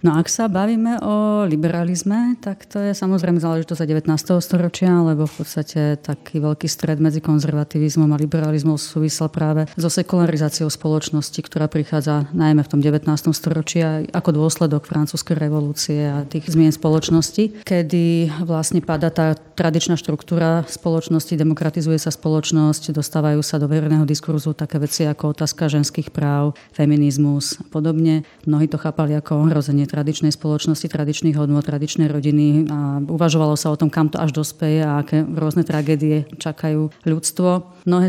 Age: 30-49